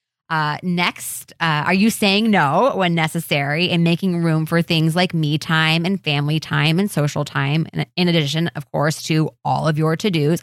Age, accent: 20-39, American